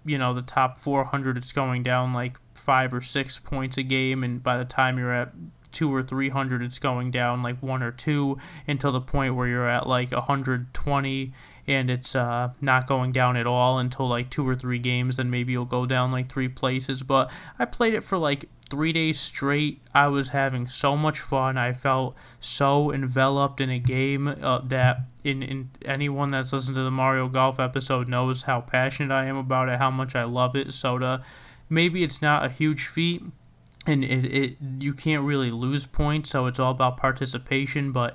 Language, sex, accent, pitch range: English, male, American, 125-135 Hz